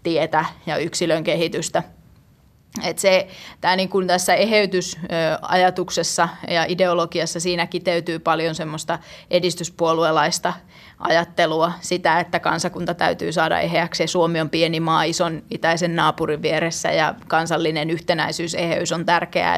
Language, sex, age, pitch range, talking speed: Finnish, female, 30-49, 165-185 Hz, 105 wpm